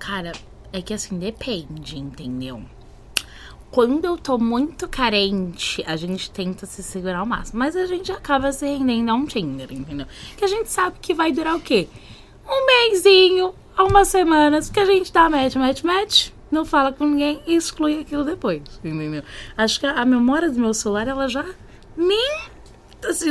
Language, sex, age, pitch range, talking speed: Portuguese, female, 10-29, 180-295 Hz, 180 wpm